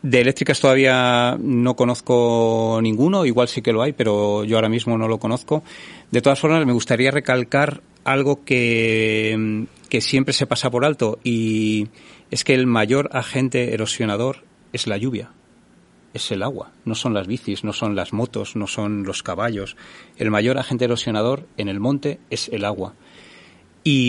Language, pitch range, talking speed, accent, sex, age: Spanish, 110-130 Hz, 170 wpm, Spanish, male, 40-59